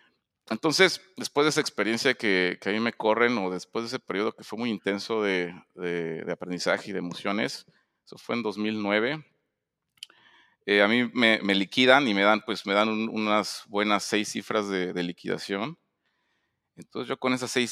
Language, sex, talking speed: Spanish, male, 190 wpm